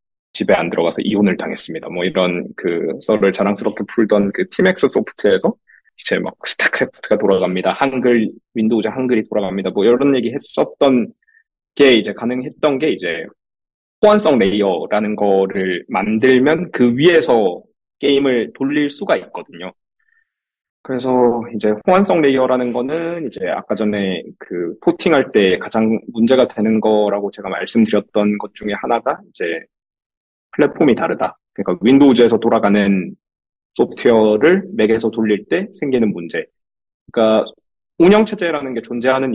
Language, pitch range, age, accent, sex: Korean, 105-140 Hz, 20-39, native, male